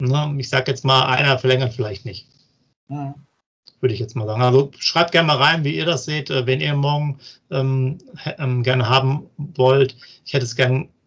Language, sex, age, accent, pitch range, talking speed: German, male, 40-59, German, 125-135 Hz, 180 wpm